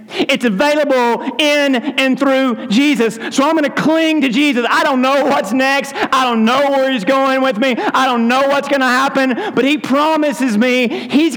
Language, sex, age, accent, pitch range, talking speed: English, male, 40-59, American, 160-265 Hz, 200 wpm